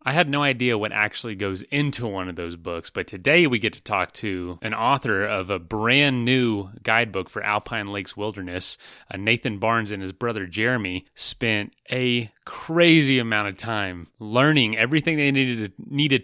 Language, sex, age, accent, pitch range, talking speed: English, male, 30-49, American, 100-125 Hz, 175 wpm